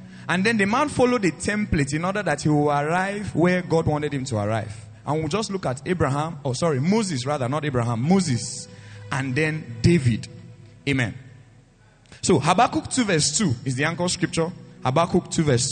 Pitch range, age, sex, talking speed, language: 130-185 Hz, 30-49, male, 185 wpm, English